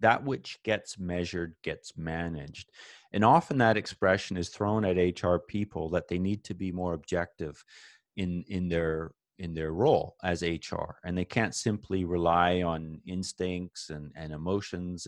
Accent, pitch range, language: American, 85-110 Hz, English